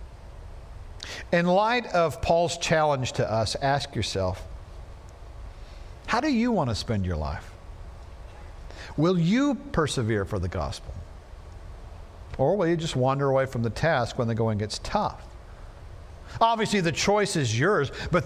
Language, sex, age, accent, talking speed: English, male, 50-69, American, 140 wpm